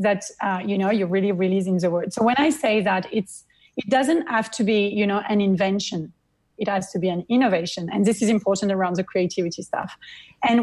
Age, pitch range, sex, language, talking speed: 30-49, 195-235 Hz, female, English, 220 wpm